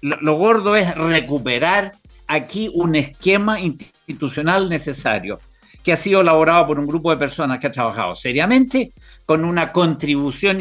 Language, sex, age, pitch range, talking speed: Spanish, male, 50-69, 145-185 Hz, 140 wpm